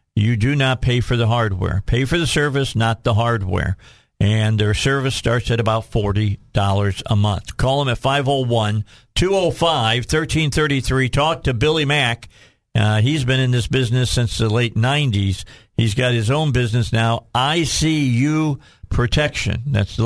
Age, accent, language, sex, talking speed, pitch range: 50-69, American, English, male, 155 wpm, 110-135 Hz